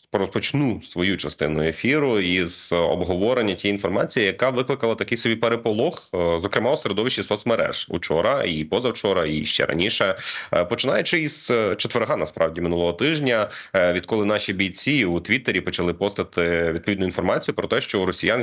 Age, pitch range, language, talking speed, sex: 30-49, 90-120 Hz, Ukrainian, 140 wpm, male